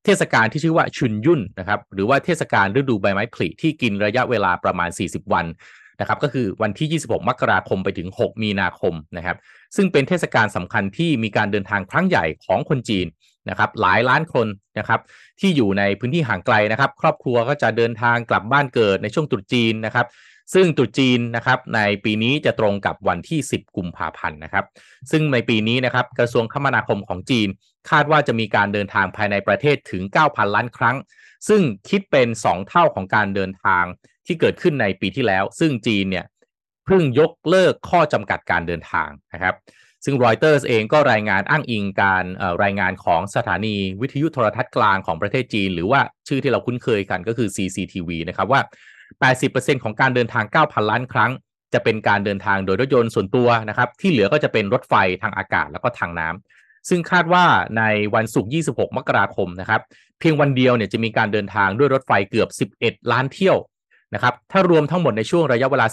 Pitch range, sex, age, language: 100-140 Hz, male, 30-49, Thai